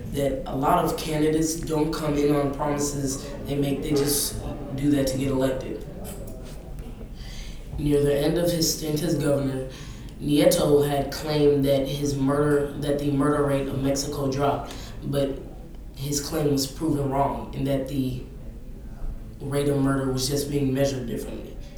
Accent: American